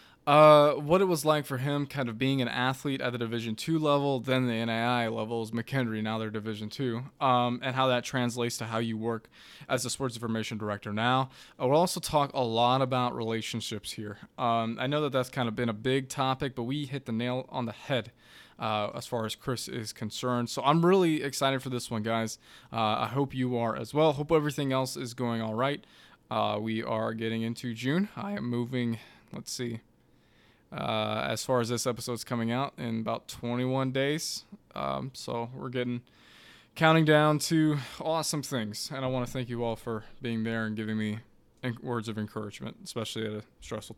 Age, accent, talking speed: 20-39, American, 205 wpm